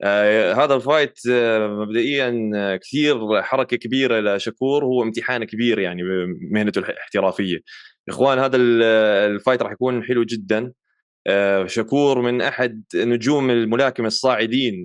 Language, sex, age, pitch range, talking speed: Arabic, male, 20-39, 110-130 Hz, 105 wpm